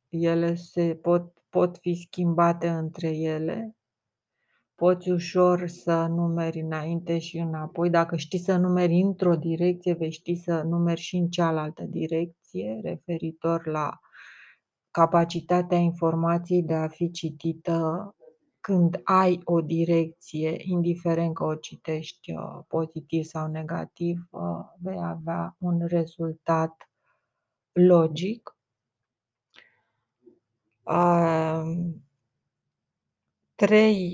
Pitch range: 165-180 Hz